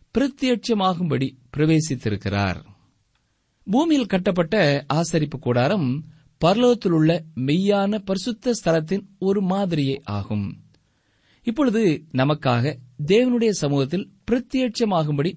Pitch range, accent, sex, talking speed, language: 120-190 Hz, native, male, 65 wpm, Tamil